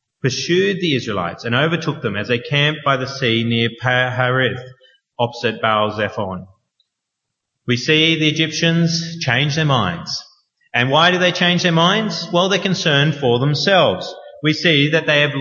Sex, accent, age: male, Australian, 30-49